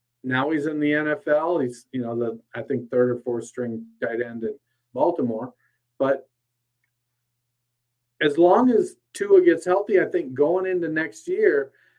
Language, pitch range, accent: English, 120-150 Hz, American